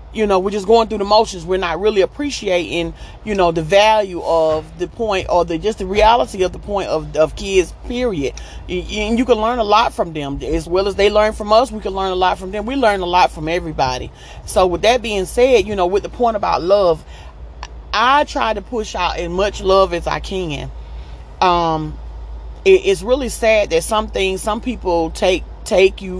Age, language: 40-59, English